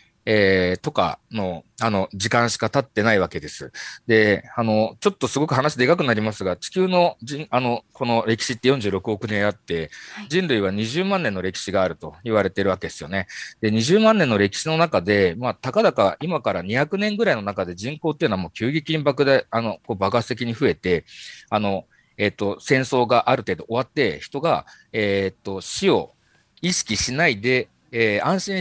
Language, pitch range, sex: Japanese, 100-145 Hz, male